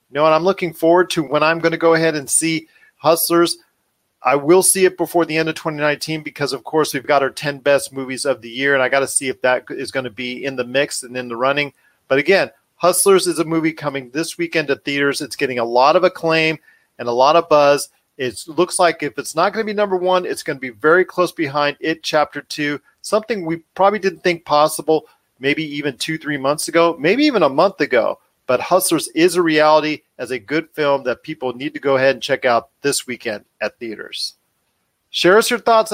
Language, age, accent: English, 40-59, American